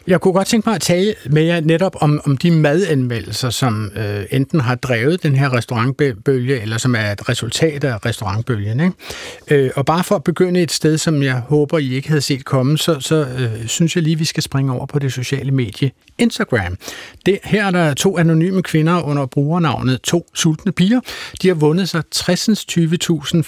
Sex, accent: male, native